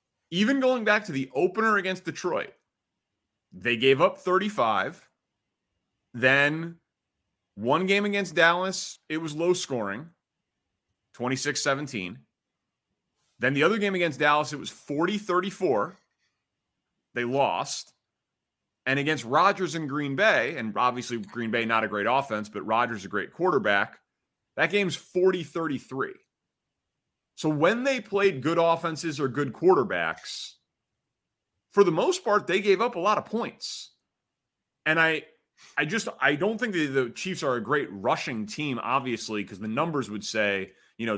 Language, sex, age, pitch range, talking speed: English, male, 30-49, 125-180 Hz, 145 wpm